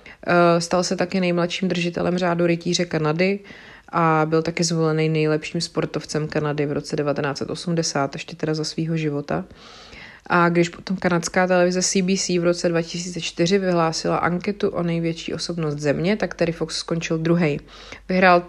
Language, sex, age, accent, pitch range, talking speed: Czech, female, 30-49, native, 160-180 Hz, 145 wpm